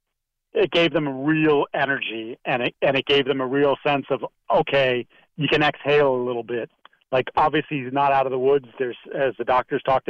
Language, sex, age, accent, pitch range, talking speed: English, male, 40-59, American, 125-145 Hz, 215 wpm